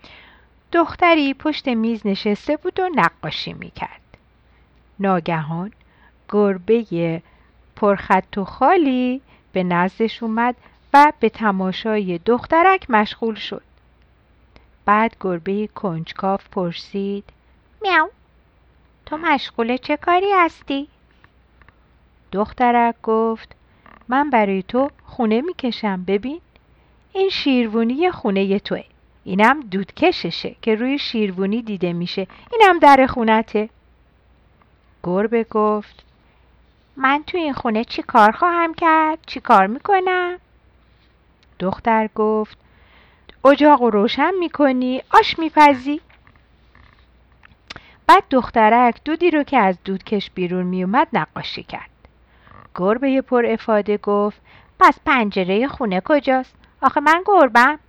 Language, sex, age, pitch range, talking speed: Persian, female, 50-69, 195-285 Hz, 100 wpm